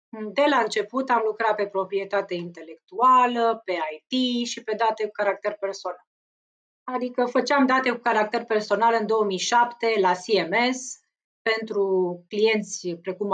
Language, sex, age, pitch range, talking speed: Romanian, female, 30-49, 195-255 Hz, 130 wpm